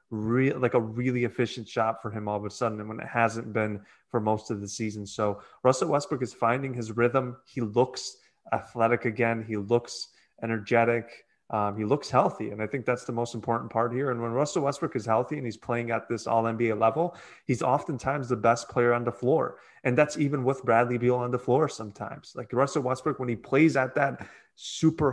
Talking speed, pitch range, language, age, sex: 210 wpm, 115-130 Hz, English, 20-39, male